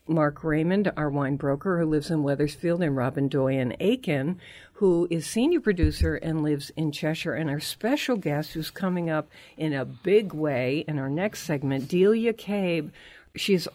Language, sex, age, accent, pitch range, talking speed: English, female, 60-79, American, 140-185 Hz, 170 wpm